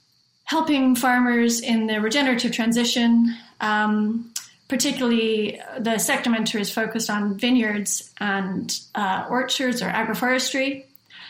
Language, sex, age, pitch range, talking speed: English, female, 30-49, 205-235 Hz, 105 wpm